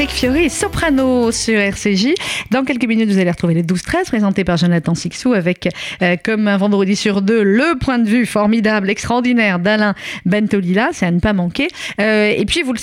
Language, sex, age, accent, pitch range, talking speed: French, female, 40-59, French, 195-245 Hz, 195 wpm